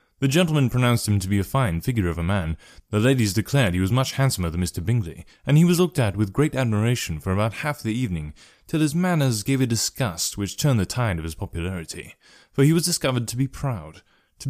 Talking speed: 230 wpm